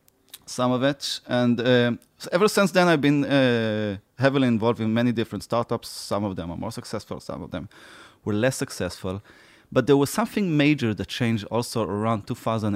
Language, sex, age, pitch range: Hebrew, male, 30-49, 105-135 Hz